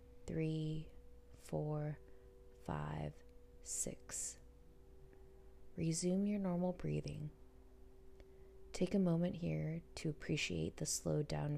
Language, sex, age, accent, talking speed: English, female, 20-39, American, 90 wpm